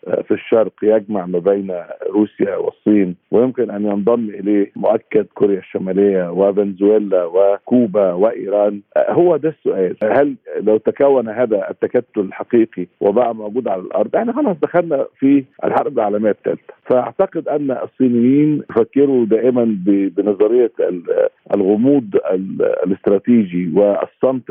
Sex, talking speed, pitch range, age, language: male, 115 wpm, 100-135 Hz, 50-69, Arabic